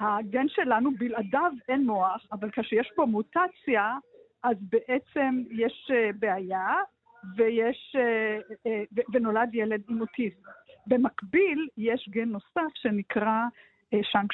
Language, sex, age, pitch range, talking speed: Hebrew, female, 50-69, 215-265 Hz, 100 wpm